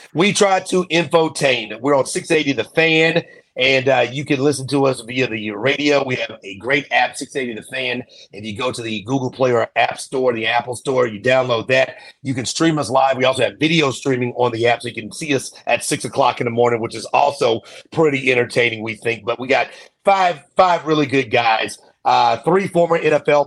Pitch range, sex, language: 120-145 Hz, male, English